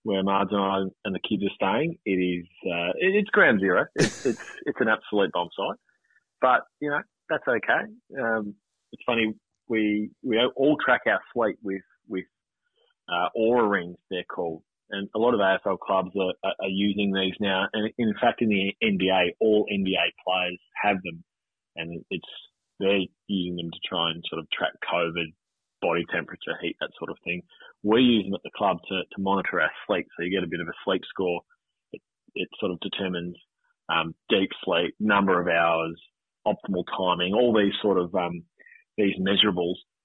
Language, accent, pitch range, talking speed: English, Australian, 90-105 Hz, 185 wpm